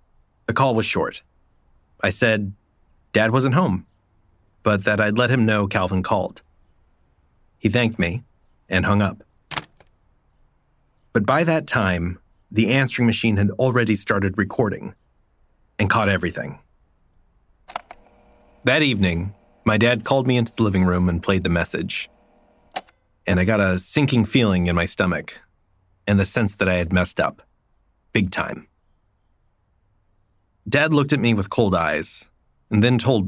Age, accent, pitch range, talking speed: 30-49, American, 90-115 Hz, 145 wpm